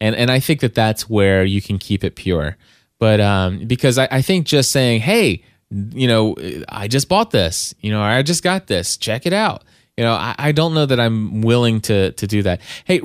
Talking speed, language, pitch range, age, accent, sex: 235 wpm, English, 105-130 Hz, 20-39, American, male